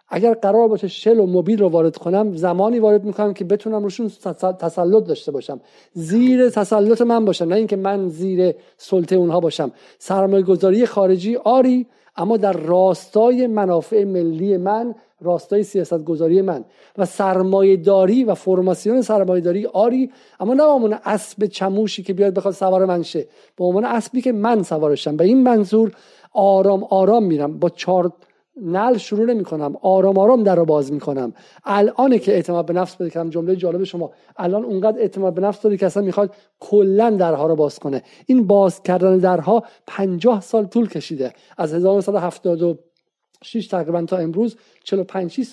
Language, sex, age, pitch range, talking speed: Persian, male, 50-69, 180-225 Hz, 160 wpm